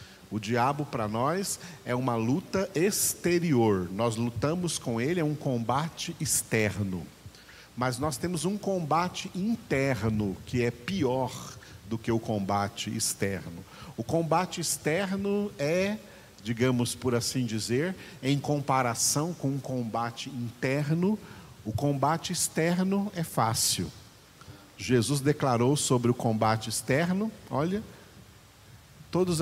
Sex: male